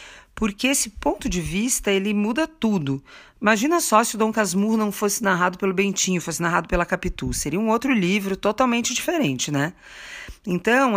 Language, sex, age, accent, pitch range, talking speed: Portuguese, female, 40-59, Brazilian, 165-215 Hz, 170 wpm